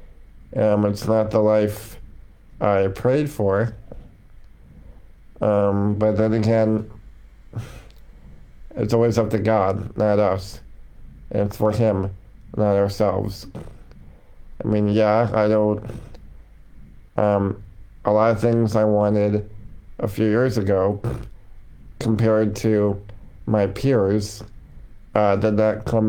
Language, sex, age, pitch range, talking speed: English, male, 50-69, 100-110 Hz, 115 wpm